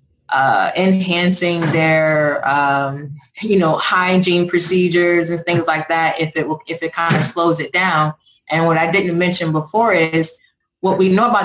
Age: 20-39